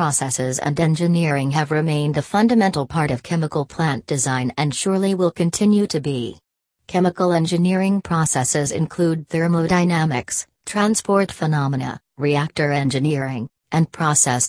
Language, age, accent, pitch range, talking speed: English, 40-59, American, 140-170 Hz, 120 wpm